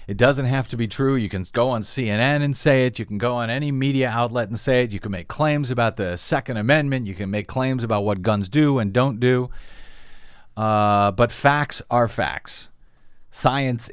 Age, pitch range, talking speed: 40-59, 100-140 Hz, 210 wpm